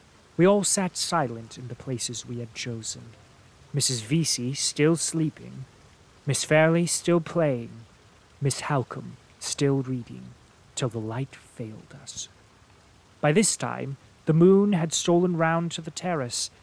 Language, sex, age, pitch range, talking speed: English, male, 30-49, 120-160 Hz, 135 wpm